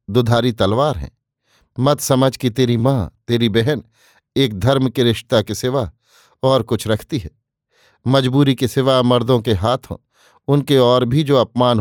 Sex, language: male, Hindi